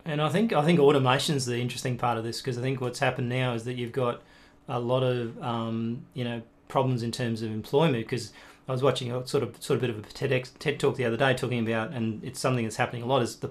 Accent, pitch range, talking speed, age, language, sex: Australian, 110-125 Hz, 270 wpm, 30-49, English, male